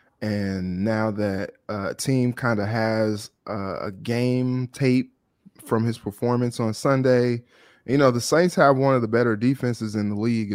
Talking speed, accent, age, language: 165 wpm, American, 20-39, English